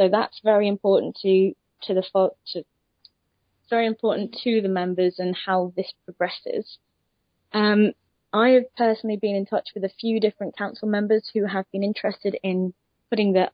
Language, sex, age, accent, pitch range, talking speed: English, female, 20-39, British, 185-215 Hz, 170 wpm